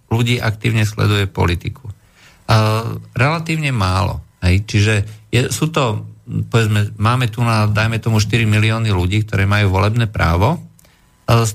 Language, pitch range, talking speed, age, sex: Slovak, 100-120 Hz, 130 wpm, 50-69, male